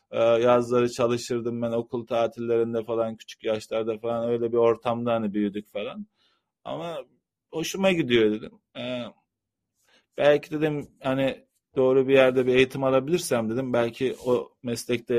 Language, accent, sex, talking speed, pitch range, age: Turkish, native, male, 130 wpm, 110-130 Hz, 40-59